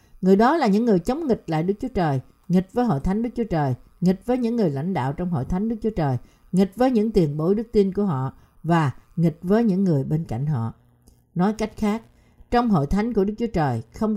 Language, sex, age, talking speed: Vietnamese, female, 60-79, 245 wpm